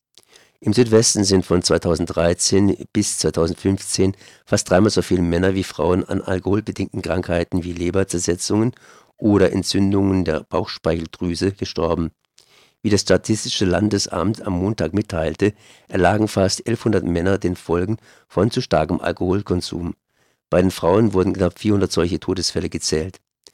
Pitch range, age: 85-105 Hz, 50-69